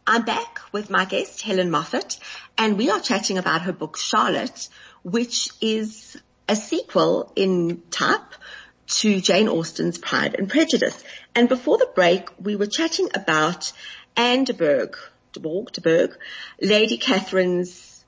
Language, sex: English, female